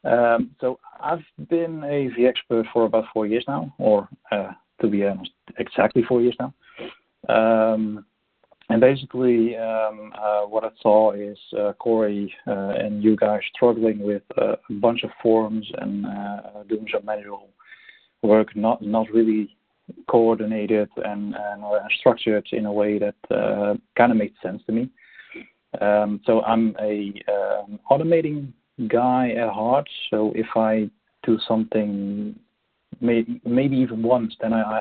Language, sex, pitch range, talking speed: English, male, 105-120 Hz, 150 wpm